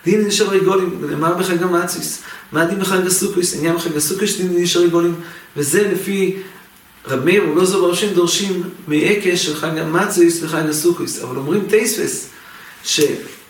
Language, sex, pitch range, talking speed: English, male, 170-200 Hz, 135 wpm